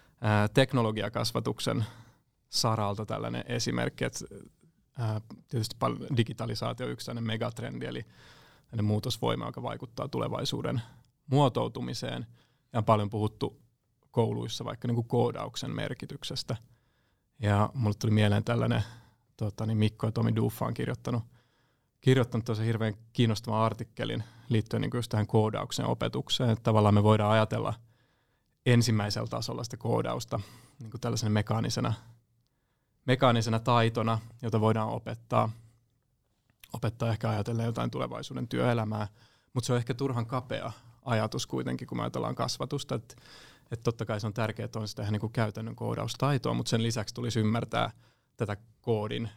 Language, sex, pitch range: Finnish, male, 110-125 Hz